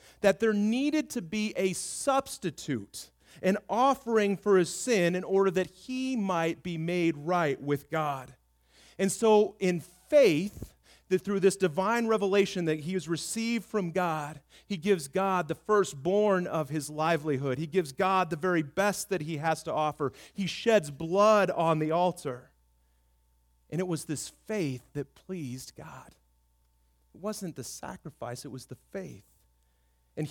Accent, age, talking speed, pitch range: American, 30-49, 155 wpm, 130-200 Hz